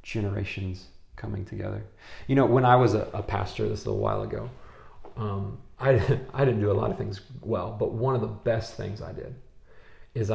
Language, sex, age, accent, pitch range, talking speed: English, male, 30-49, American, 100-115 Hz, 205 wpm